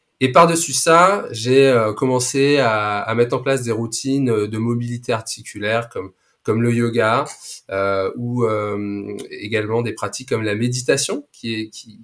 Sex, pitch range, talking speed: male, 110-130 Hz, 145 wpm